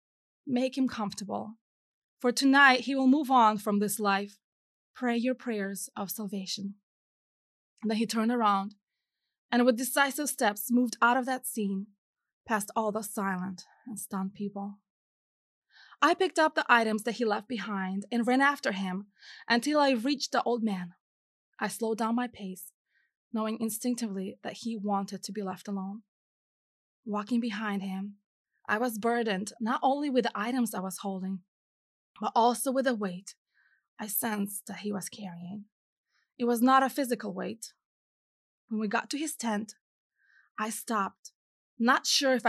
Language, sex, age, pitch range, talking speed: English, female, 20-39, 205-245 Hz, 160 wpm